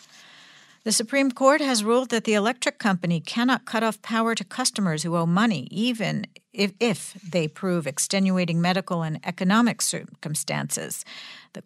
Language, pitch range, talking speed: English, 170-225 Hz, 150 wpm